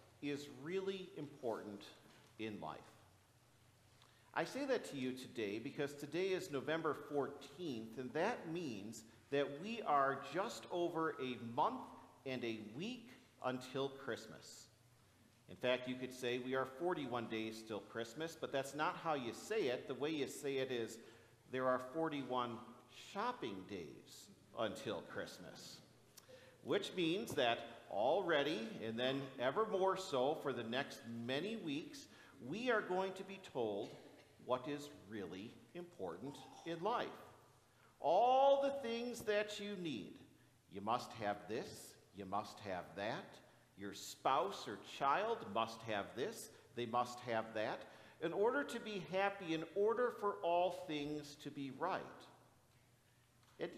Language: English